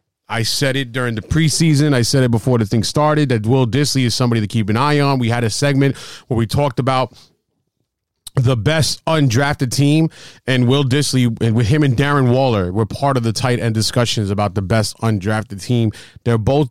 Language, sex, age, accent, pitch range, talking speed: English, male, 30-49, American, 115-140 Hz, 205 wpm